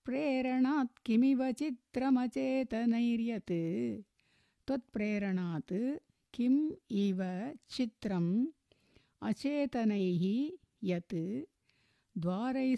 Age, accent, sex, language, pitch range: 60-79, native, female, Tamil, 185-255 Hz